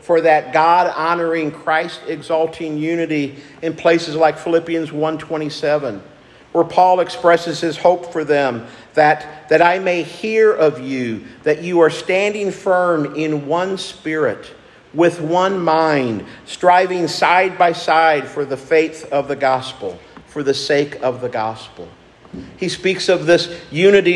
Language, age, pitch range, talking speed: English, 50-69, 150-175 Hz, 145 wpm